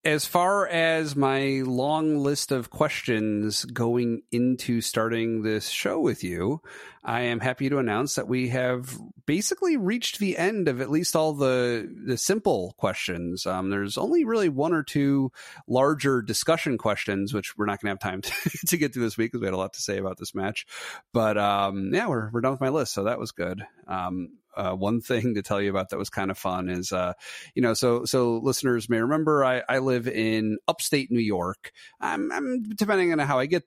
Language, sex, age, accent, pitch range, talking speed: English, male, 30-49, American, 100-135 Hz, 210 wpm